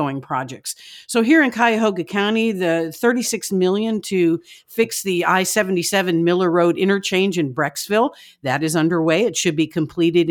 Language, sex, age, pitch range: English, female, 50-69, 155-195 Hz